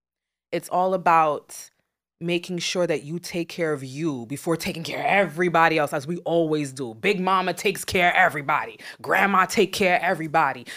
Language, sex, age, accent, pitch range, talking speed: English, female, 20-39, American, 155-200 Hz, 180 wpm